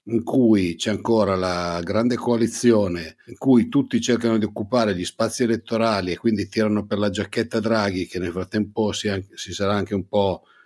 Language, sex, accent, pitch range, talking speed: Italian, male, native, 95-115 Hz, 185 wpm